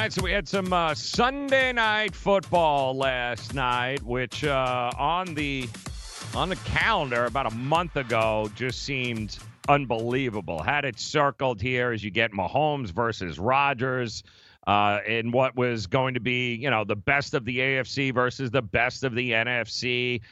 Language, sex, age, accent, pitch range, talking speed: English, male, 40-59, American, 120-160 Hz, 160 wpm